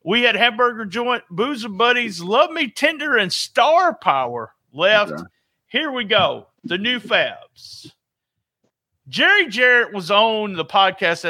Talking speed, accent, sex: 140 wpm, American, male